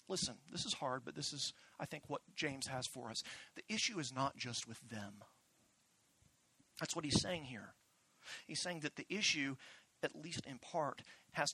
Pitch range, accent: 135-195 Hz, American